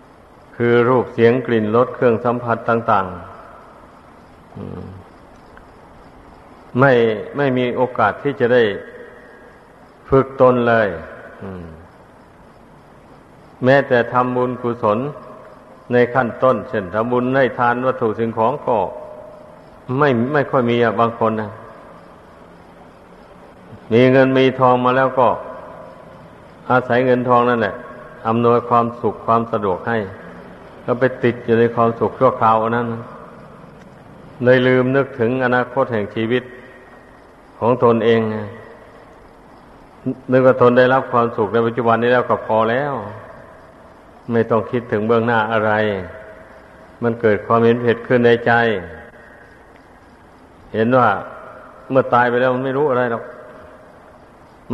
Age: 60-79